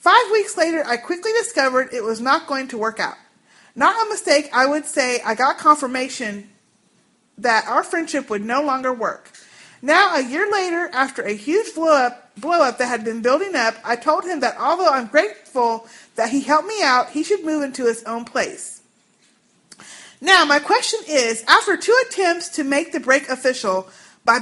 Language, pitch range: English, 240-335 Hz